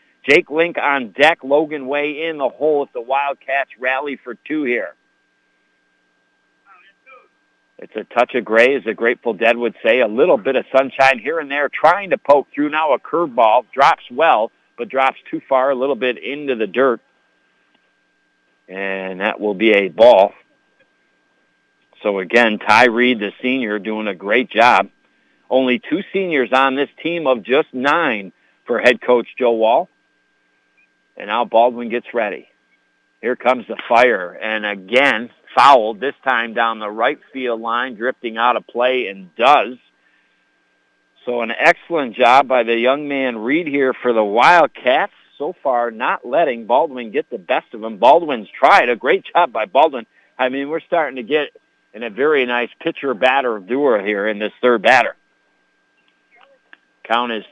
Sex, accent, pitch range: male, American, 115-140 Hz